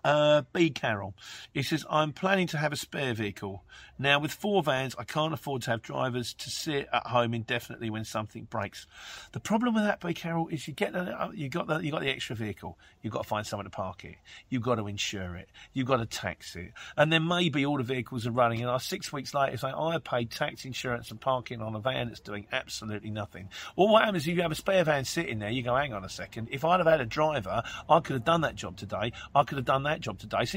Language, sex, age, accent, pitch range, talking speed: English, male, 50-69, British, 110-155 Hz, 260 wpm